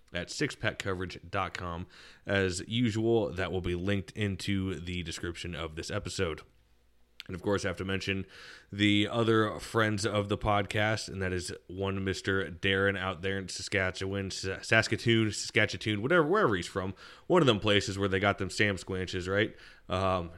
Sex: male